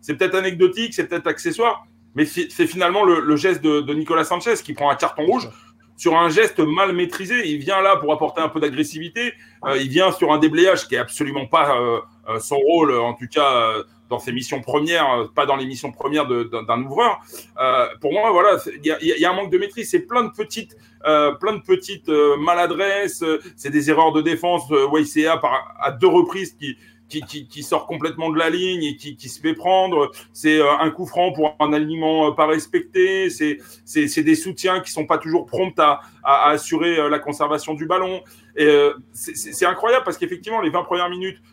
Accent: French